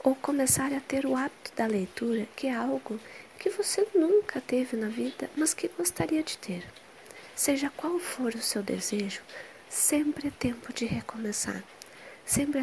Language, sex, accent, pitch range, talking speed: Portuguese, female, Brazilian, 215-275 Hz, 160 wpm